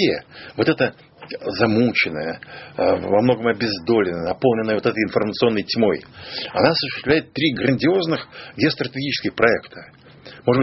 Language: Russian